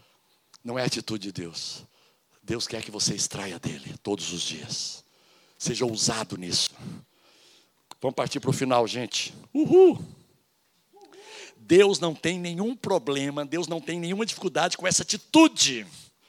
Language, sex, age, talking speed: Portuguese, male, 60-79, 140 wpm